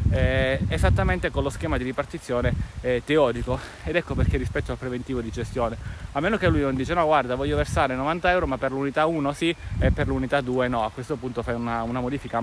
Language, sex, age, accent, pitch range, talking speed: Italian, male, 20-39, native, 115-145 Hz, 220 wpm